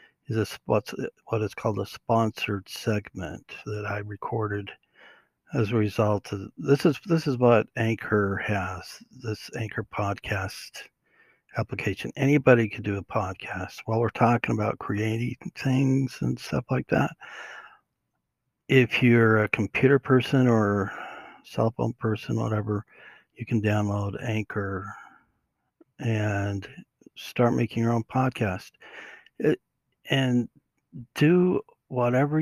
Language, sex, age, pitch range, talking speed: English, male, 60-79, 105-120 Hz, 120 wpm